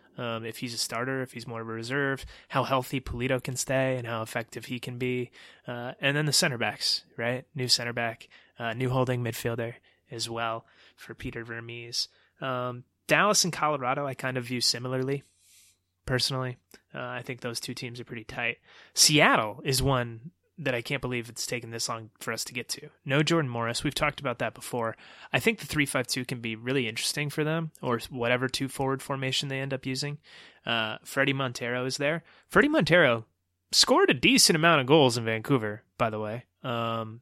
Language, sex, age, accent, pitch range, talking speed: English, male, 20-39, American, 115-135 Hz, 195 wpm